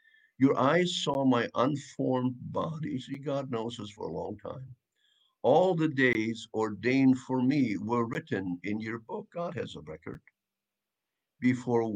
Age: 50-69